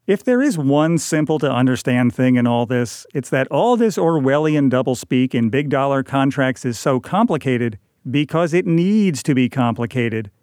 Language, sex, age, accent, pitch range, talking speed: English, male, 50-69, American, 130-165 Hz, 155 wpm